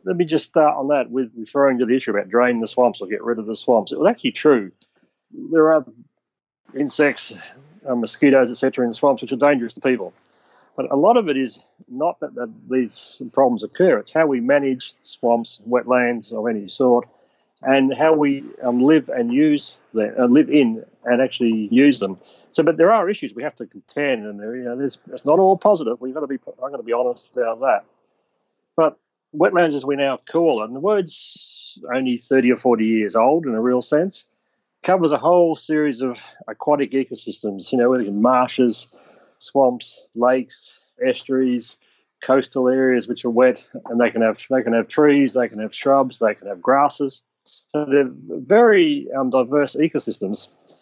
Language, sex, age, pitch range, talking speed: English, male, 40-59, 125-155 Hz, 190 wpm